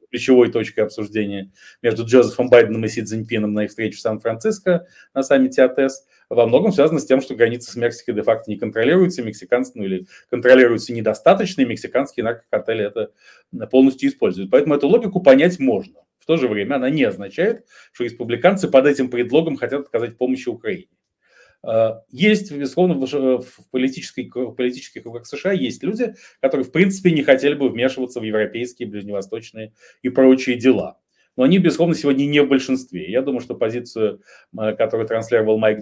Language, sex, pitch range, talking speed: Russian, male, 115-145 Hz, 165 wpm